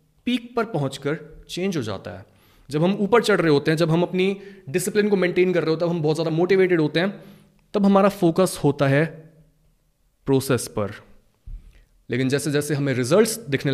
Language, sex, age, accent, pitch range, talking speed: Hindi, male, 20-39, native, 135-185 Hz, 190 wpm